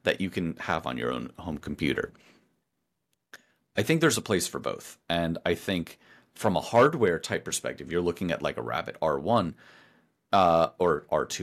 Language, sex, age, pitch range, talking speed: English, male, 30-49, 85-110 Hz, 175 wpm